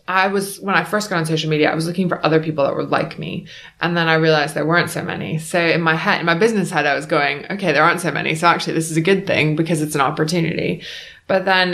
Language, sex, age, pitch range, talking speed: English, female, 20-39, 155-175 Hz, 285 wpm